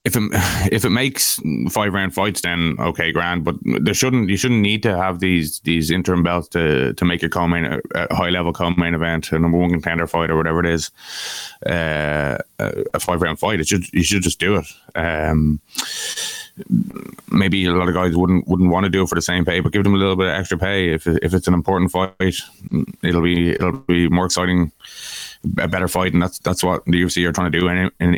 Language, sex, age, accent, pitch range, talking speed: English, male, 20-39, Irish, 85-95 Hz, 225 wpm